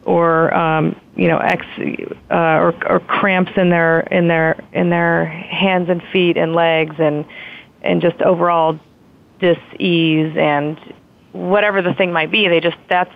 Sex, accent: female, American